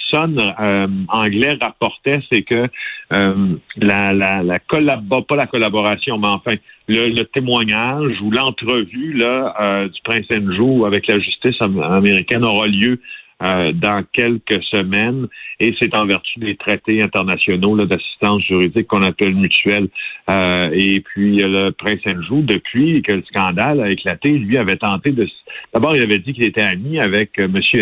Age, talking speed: 50-69, 160 wpm